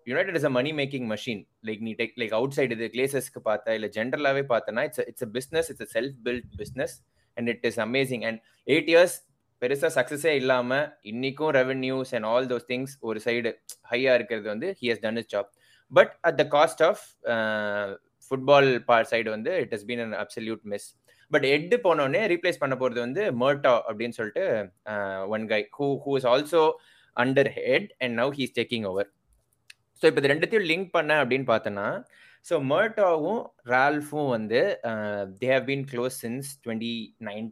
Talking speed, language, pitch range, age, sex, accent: 155 wpm, Tamil, 115-140 Hz, 20-39, male, native